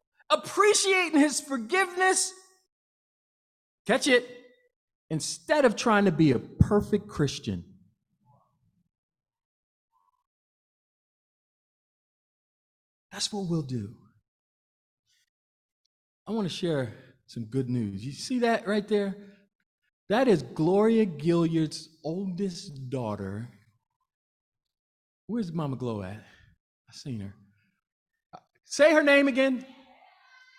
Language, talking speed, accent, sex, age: English, 90 wpm, American, male, 50-69